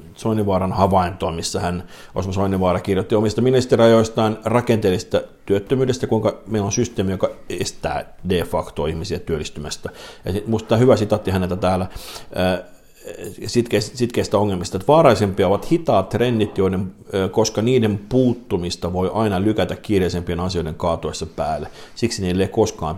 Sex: male